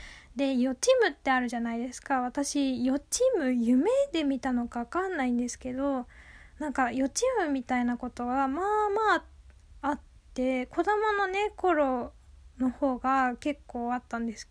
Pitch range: 250-305 Hz